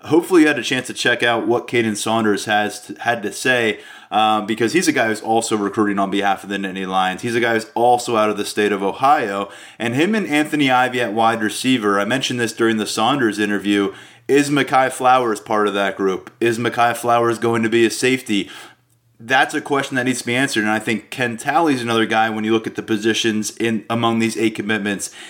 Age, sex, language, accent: 20-39, male, English, American